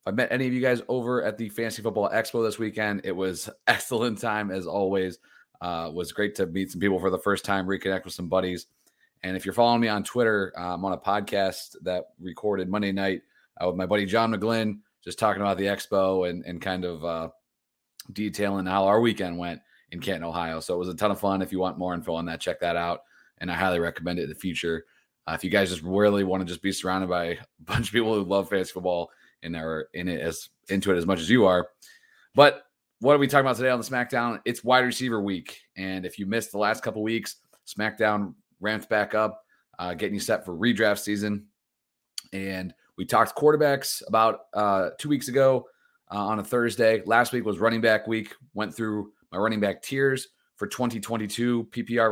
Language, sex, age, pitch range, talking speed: English, male, 30-49, 95-115 Hz, 225 wpm